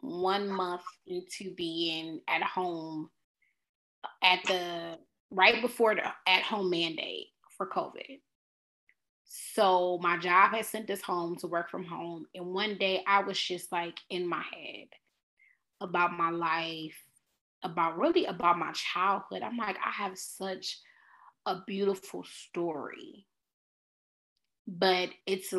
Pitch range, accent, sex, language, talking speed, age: 170-205 Hz, American, female, English, 130 wpm, 20-39